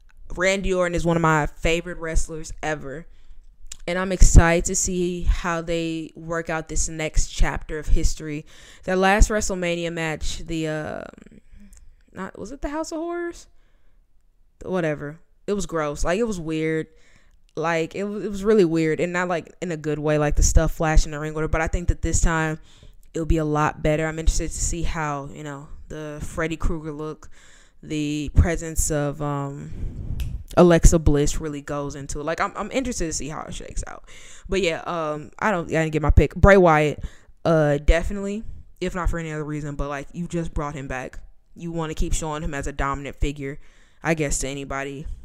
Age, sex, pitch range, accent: 10-29, female, 150-175 Hz, American